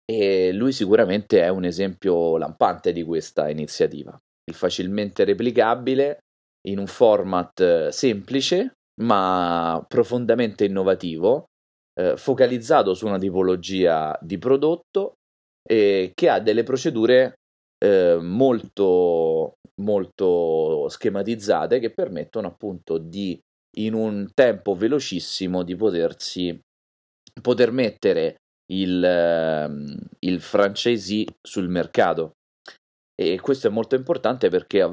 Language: Italian